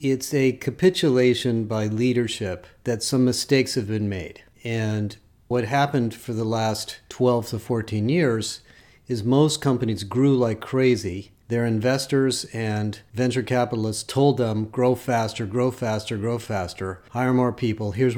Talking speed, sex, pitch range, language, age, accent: 145 wpm, male, 110-130 Hz, English, 40-59, American